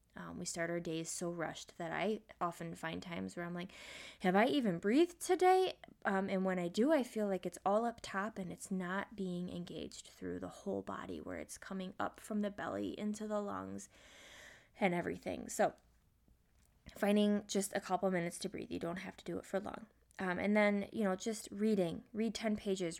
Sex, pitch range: female, 175-210 Hz